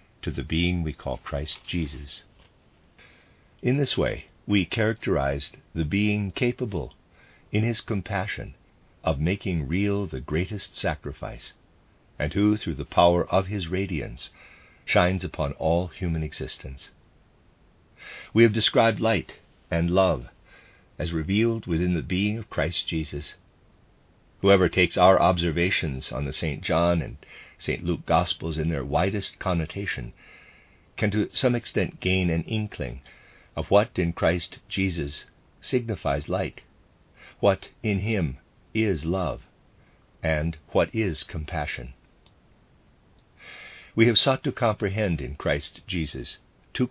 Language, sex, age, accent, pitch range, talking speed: English, male, 50-69, American, 80-105 Hz, 125 wpm